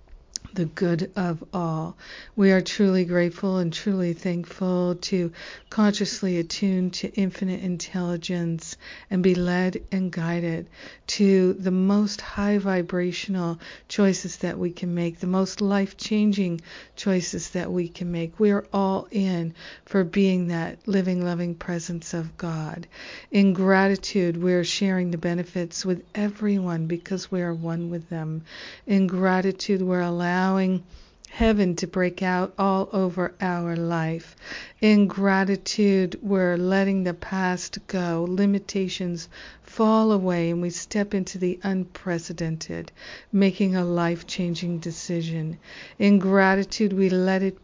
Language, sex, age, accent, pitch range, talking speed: English, female, 50-69, American, 170-195 Hz, 130 wpm